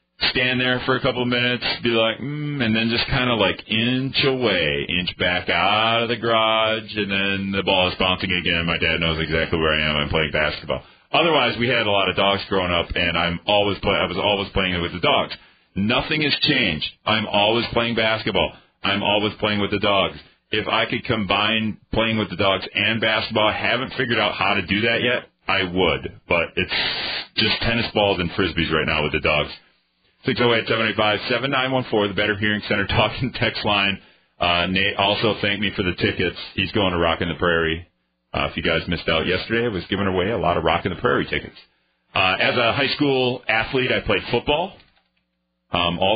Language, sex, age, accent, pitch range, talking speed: English, male, 40-59, American, 90-115 Hz, 210 wpm